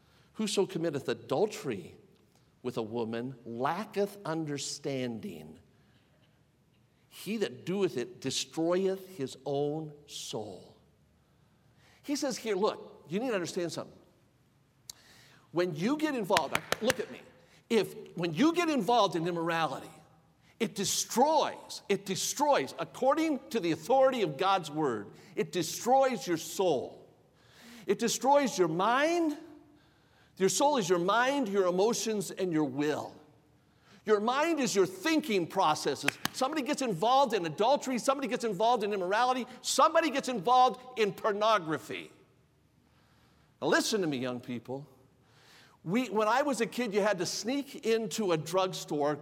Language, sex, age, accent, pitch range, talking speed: English, male, 50-69, American, 150-235 Hz, 130 wpm